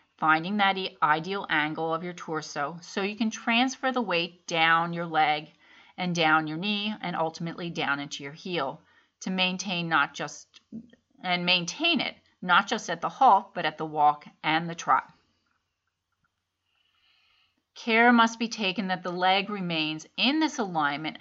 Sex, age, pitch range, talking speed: female, 30-49, 160-210 Hz, 160 wpm